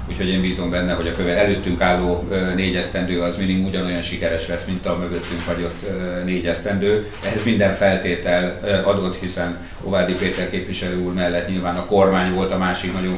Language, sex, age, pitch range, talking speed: Hungarian, male, 30-49, 90-100 Hz, 170 wpm